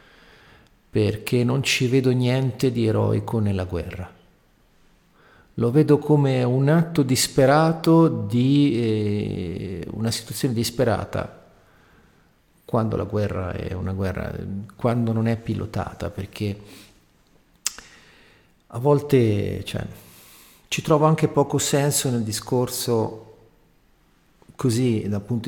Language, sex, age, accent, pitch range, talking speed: Italian, male, 50-69, native, 100-145 Hz, 100 wpm